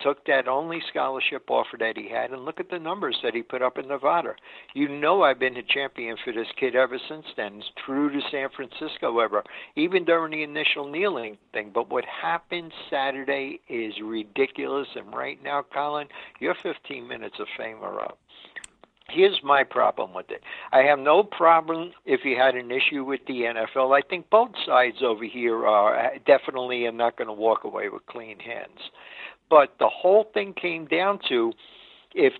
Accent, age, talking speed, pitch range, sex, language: American, 60-79, 185 wpm, 130-185 Hz, male, English